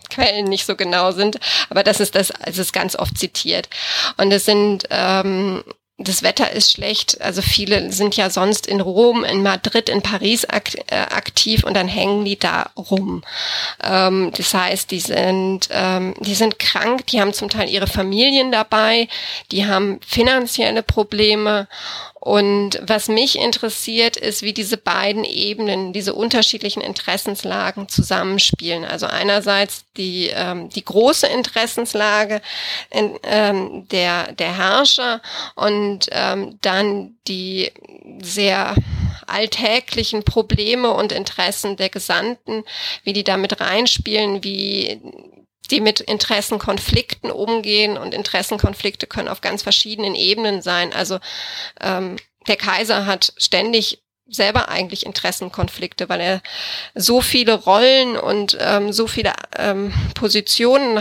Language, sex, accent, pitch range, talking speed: German, female, German, 195-220 Hz, 135 wpm